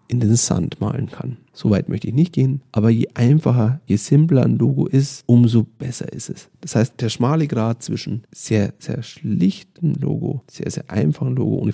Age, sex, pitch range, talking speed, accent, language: 40-59, male, 110-150 Hz, 195 wpm, German, German